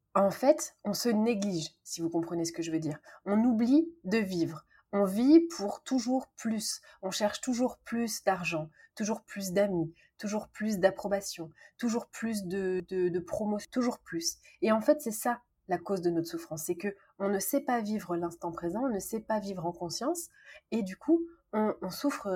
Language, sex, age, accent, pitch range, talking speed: French, female, 30-49, French, 185-240 Hz, 195 wpm